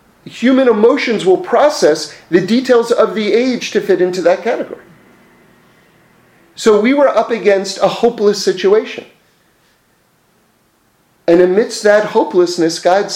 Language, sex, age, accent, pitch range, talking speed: English, male, 40-59, American, 140-210 Hz, 125 wpm